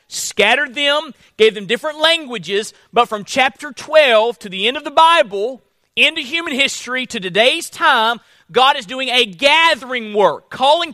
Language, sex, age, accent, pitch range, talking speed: English, male, 40-59, American, 200-285 Hz, 160 wpm